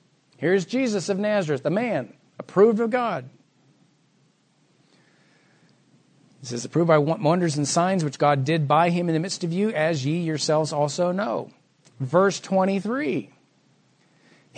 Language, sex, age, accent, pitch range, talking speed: English, male, 40-59, American, 155-215 Hz, 135 wpm